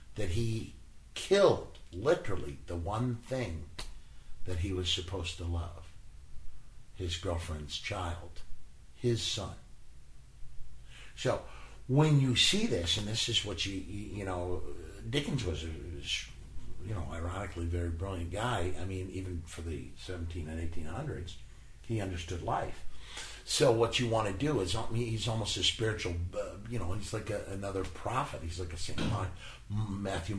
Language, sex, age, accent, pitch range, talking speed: English, male, 60-79, American, 90-110 Hz, 145 wpm